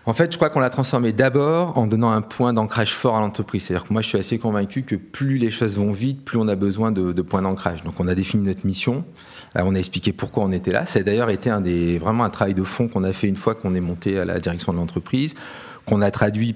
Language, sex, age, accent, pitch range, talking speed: French, male, 40-59, French, 95-120 Hz, 285 wpm